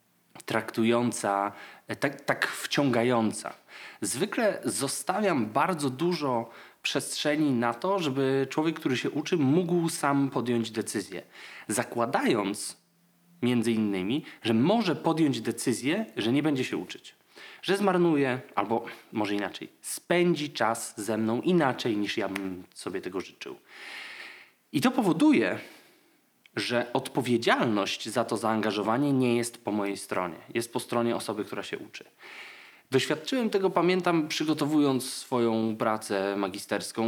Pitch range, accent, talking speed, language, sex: 115-175 Hz, native, 120 wpm, Polish, male